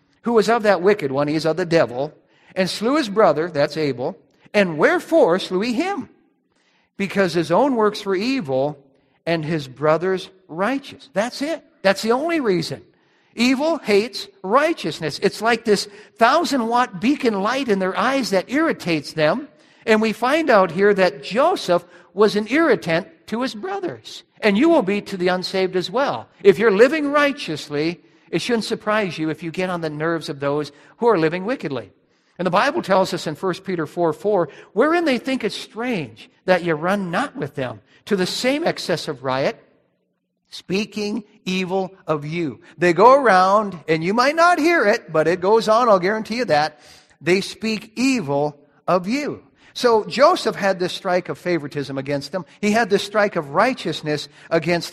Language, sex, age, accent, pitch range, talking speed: English, male, 50-69, American, 165-230 Hz, 180 wpm